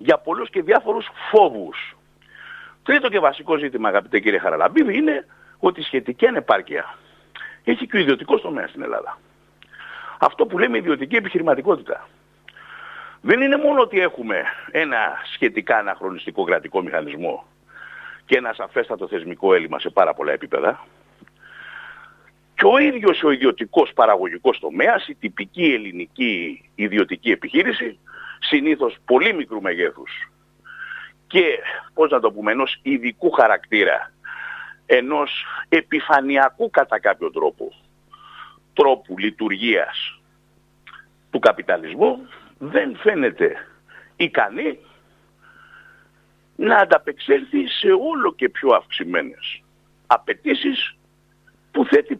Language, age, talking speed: Greek, 60-79, 105 wpm